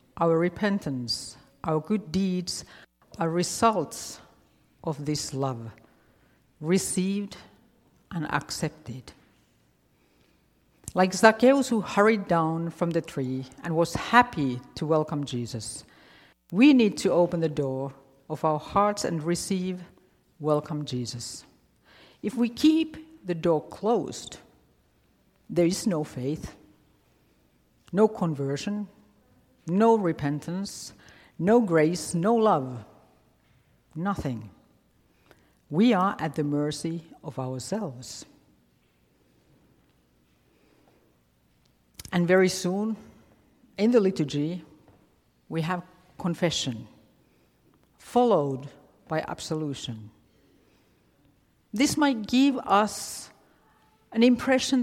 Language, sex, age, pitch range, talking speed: English, female, 50-69, 130-200 Hz, 90 wpm